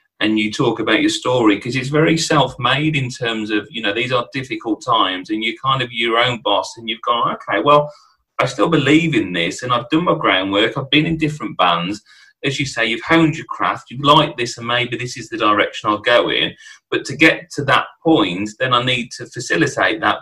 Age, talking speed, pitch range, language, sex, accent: 30-49, 230 wpm, 115-155 Hz, English, male, British